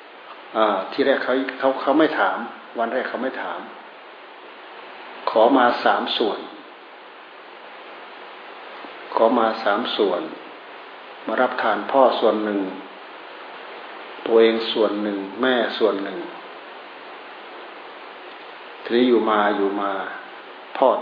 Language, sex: Thai, male